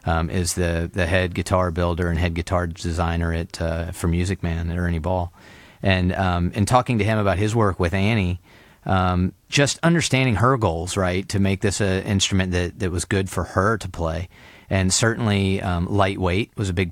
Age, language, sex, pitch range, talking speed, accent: 30-49, English, male, 90-115 Hz, 200 wpm, American